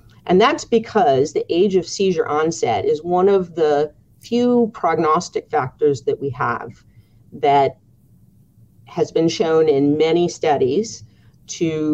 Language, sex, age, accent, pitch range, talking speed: English, female, 40-59, American, 140-220 Hz, 130 wpm